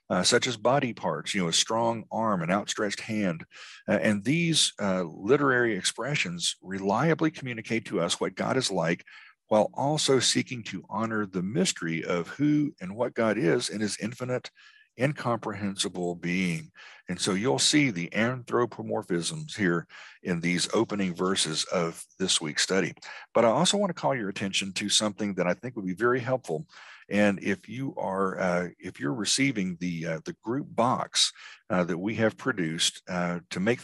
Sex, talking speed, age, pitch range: male, 175 wpm, 50-69, 95-125 Hz